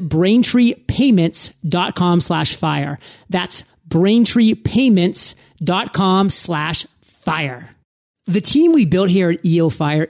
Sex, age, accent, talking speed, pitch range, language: male, 30-49, American, 90 wpm, 165-205 Hz, English